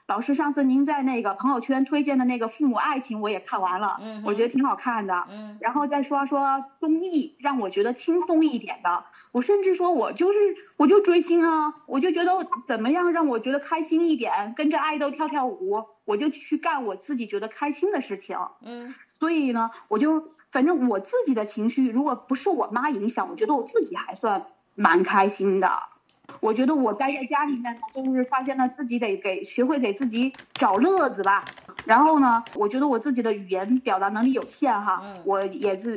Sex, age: female, 30-49